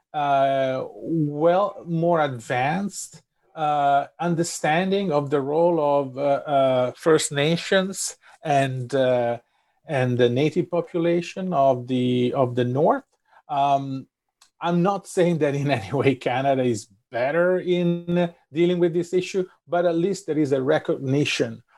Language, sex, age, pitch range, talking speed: English, male, 40-59, 125-165 Hz, 130 wpm